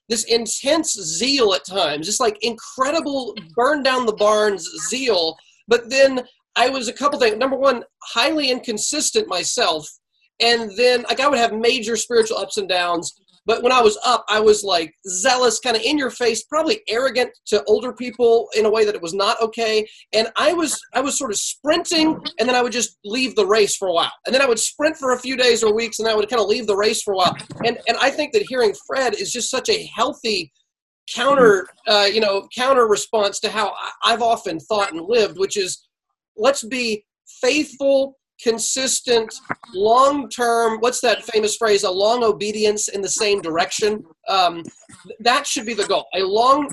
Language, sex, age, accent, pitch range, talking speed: English, male, 30-49, American, 215-265 Hz, 200 wpm